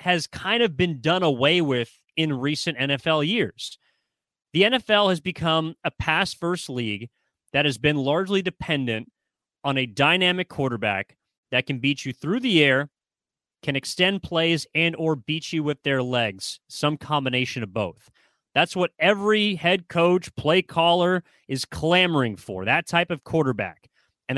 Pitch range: 135-180 Hz